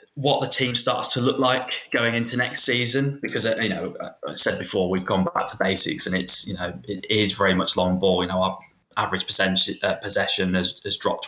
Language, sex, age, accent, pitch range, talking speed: English, male, 20-39, British, 90-110 Hz, 215 wpm